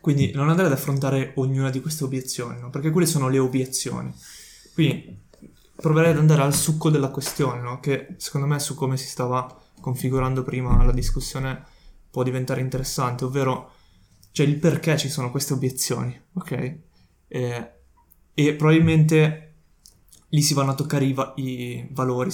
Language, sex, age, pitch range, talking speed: Italian, male, 20-39, 125-145 Hz, 155 wpm